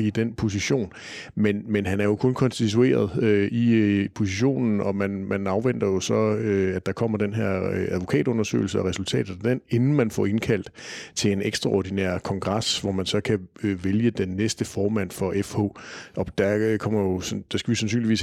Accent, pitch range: native, 95-115 Hz